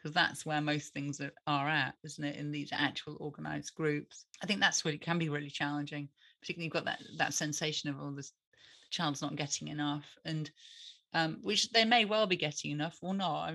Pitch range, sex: 150-175 Hz, female